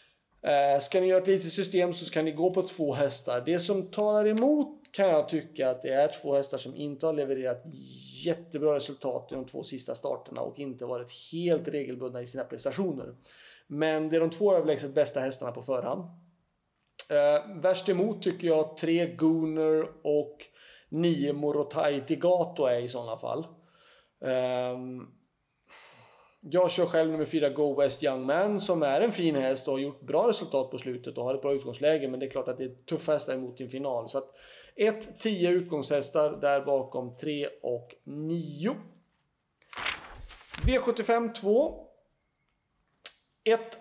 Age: 30-49